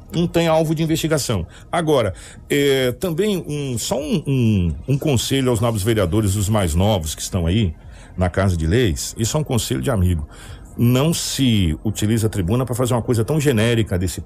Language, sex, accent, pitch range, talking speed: Portuguese, male, Brazilian, 105-150 Hz, 175 wpm